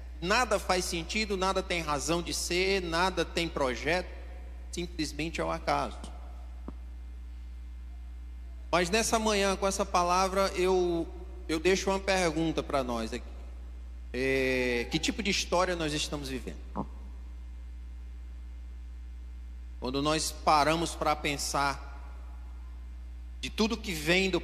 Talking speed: 115 wpm